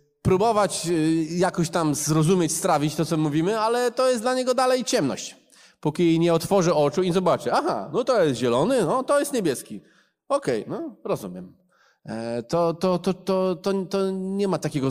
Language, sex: Polish, male